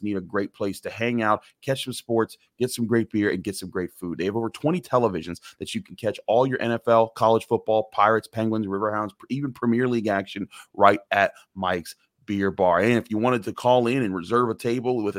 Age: 30-49